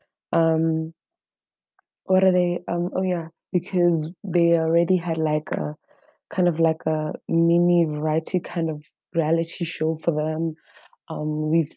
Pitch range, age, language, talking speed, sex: 160-190 Hz, 20-39, English, 140 wpm, female